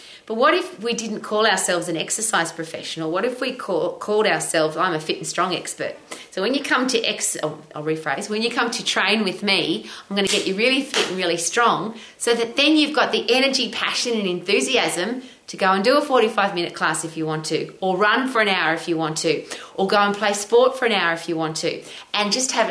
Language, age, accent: English, 30-49, Australian